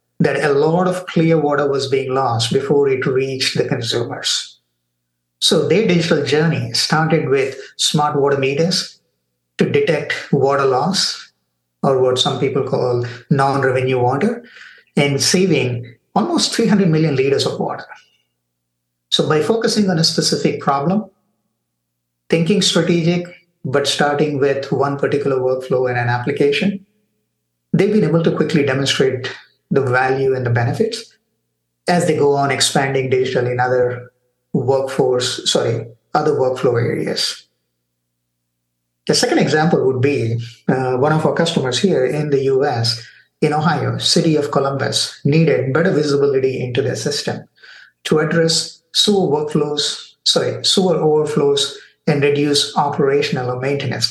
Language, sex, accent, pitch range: English, male, Indian, 125-165 Hz